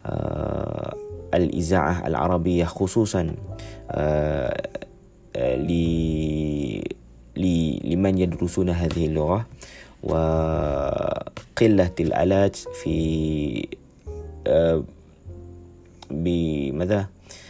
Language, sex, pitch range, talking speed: Arabic, male, 80-95 Hz, 40 wpm